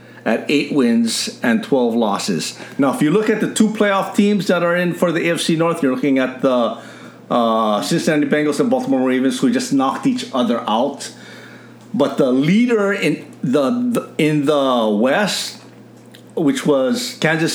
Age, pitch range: 50-69, 150-230 Hz